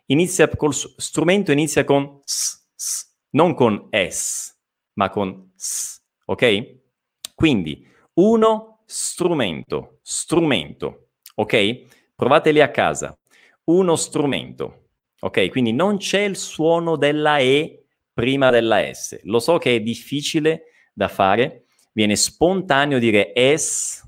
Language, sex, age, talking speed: Italian, male, 40-59, 115 wpm